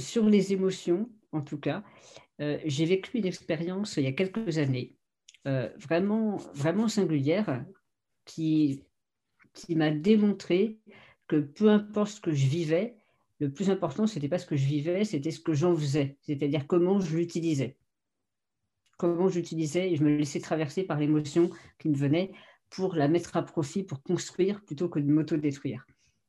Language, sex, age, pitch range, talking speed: French, female, 50-69, 140-180 Hz, 165 wpm